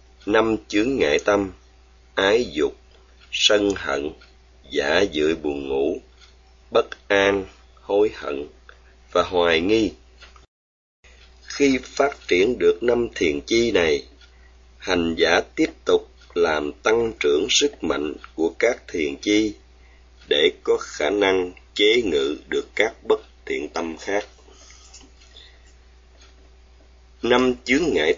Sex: male